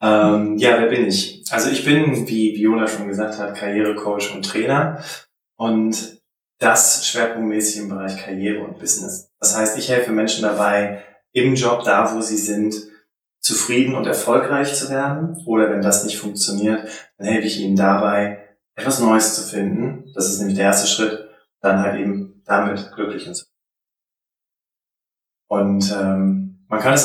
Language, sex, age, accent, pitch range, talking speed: German, male, 20-39, German, 105-120 Hz, 160 wpm